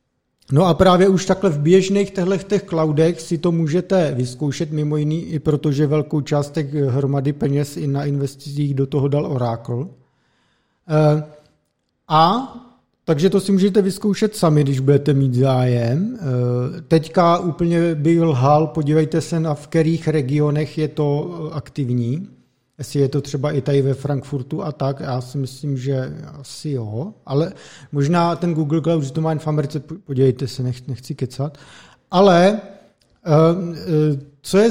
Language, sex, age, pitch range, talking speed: Czech, male, 50-69, 140-170 Hz, 150 wpm